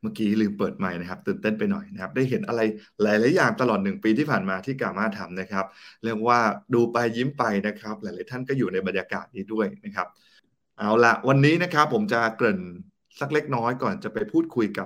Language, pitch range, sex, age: Thai, 100-135 Hz, male, 20-39